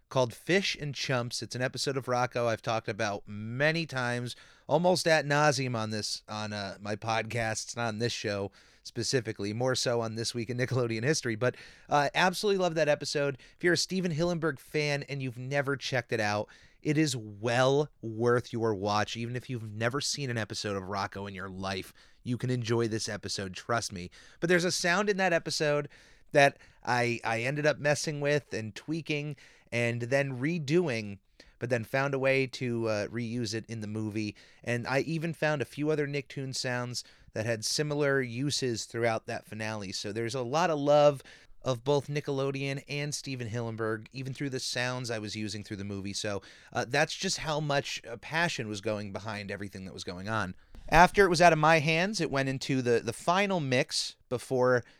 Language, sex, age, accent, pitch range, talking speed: English, male, 30-49, American, 110-145 Hz, 195 wpm